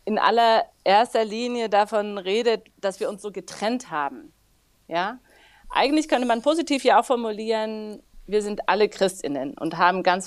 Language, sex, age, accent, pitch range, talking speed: German, female, 40-59, German, 190-230 Hz, 160 wpm